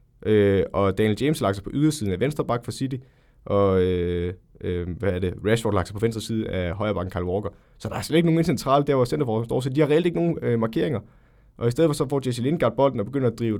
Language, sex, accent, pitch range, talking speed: Danish, male, native, 105-130 Hz, 280 wpm